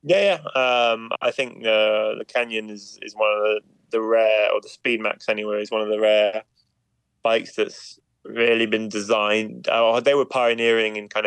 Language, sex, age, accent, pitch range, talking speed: English, male, 20-39, British, 105-115 Hz, 185 wpm